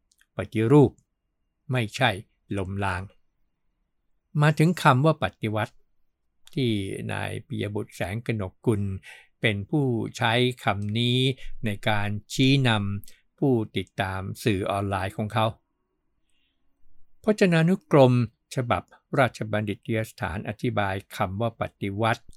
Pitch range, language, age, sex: 95-120 Hz, Thai, 60-79, male